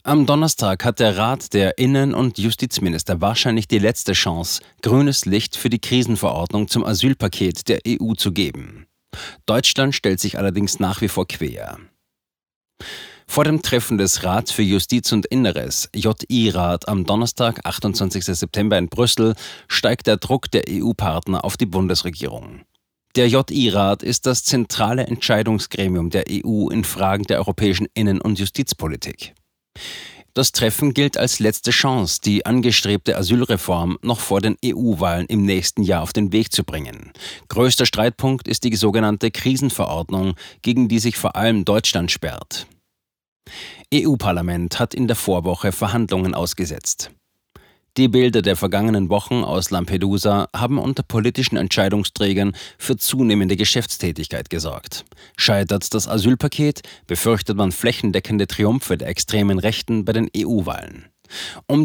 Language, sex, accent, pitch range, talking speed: German, male, German, 95-120 Hz, 140 wpm